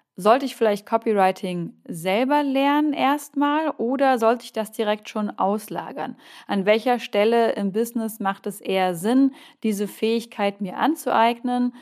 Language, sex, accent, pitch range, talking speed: German, female, German, 200-245 Hz, 135 wpm